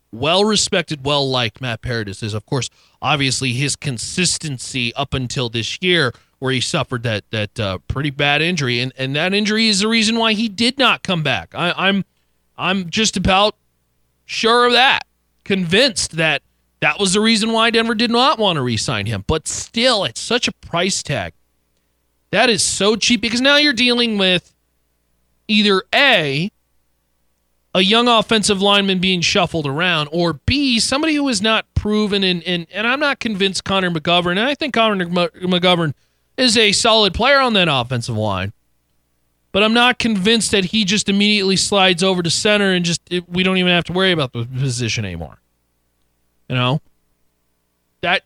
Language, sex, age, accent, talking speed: English, male, 30-49, American, 175 wpm